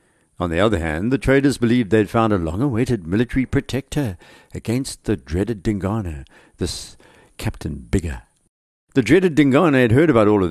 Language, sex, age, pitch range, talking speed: English, male, 60-79, 100-135 Hz, 160 wpm